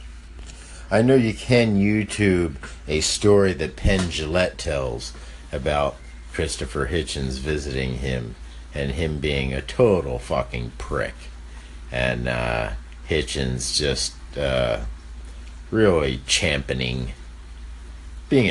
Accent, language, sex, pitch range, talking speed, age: American, English, male, 65-80 Hz, 100 wpm, 50-69